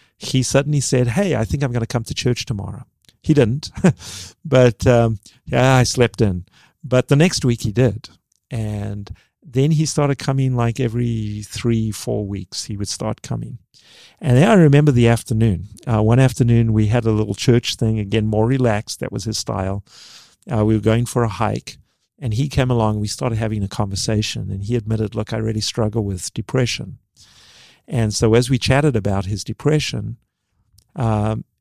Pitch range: 110-130 Hz